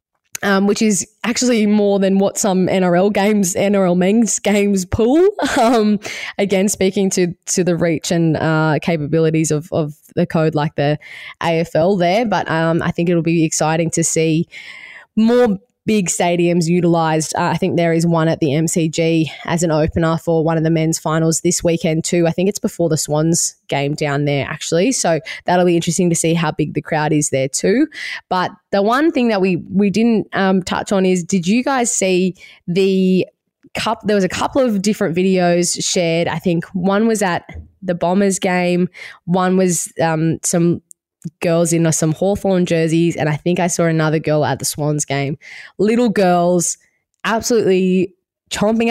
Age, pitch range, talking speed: 20-39, 160-195 Hz, 185 wpm